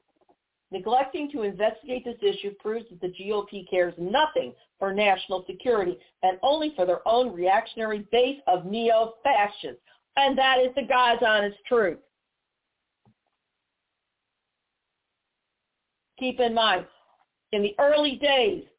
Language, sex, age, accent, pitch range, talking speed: English, female, 50-69, American, 180-255 Hz, 120 wpm